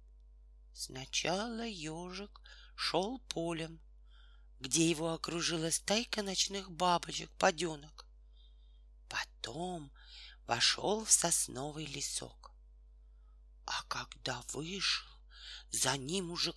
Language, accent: Russian, native